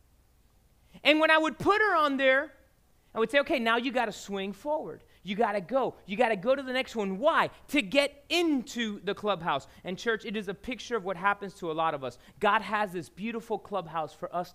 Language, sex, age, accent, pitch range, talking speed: English, male, 30-49, American, 200-300 Hz, 235 wpm